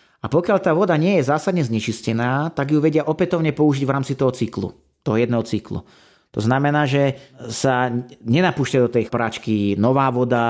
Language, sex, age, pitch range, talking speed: Slovak, male, 30-49, 115-145 Hz, 170 wpm